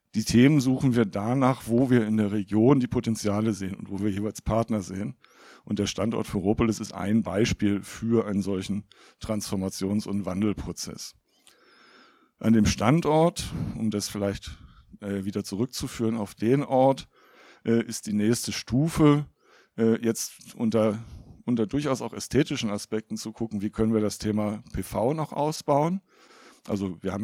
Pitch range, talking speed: 100-120 Hz, 155 wpm